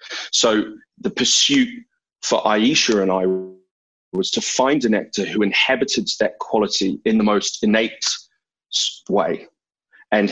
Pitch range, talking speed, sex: 100-130 Hz, 130 wpm, male